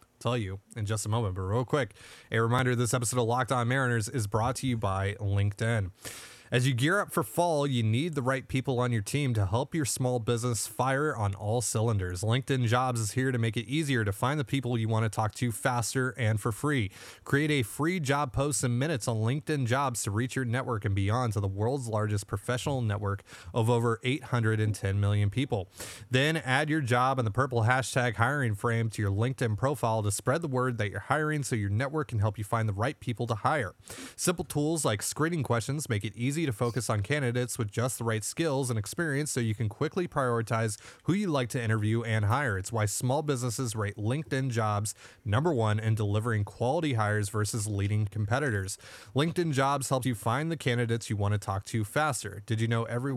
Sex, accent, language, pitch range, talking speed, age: male, American, English, 110-135 Hz, 215 wpm, 30-49